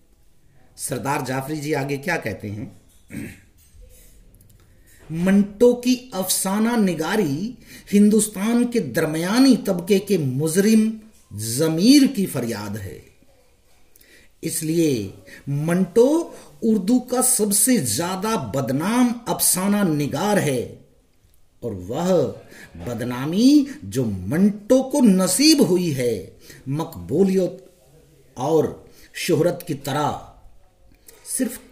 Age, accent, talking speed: 50-69, native, 85 wpm